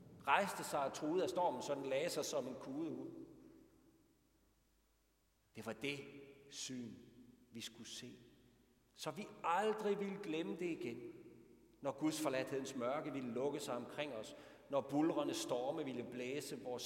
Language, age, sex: Danish, 60-79, male